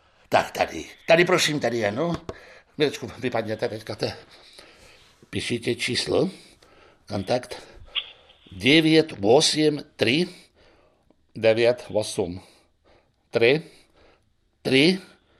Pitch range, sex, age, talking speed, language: 105-165 Hz, male, 60-79, 75 wpm, Czech